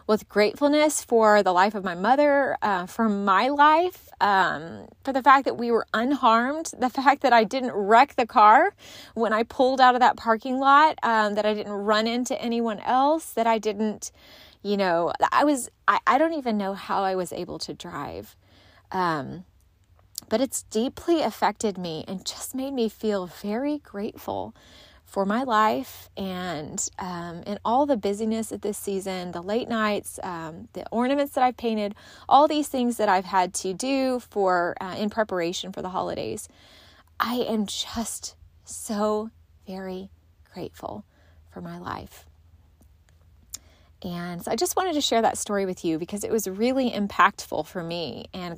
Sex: female